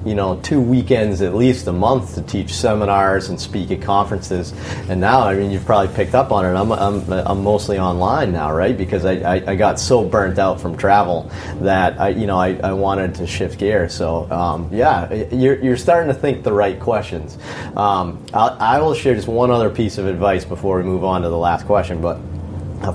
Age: 40-59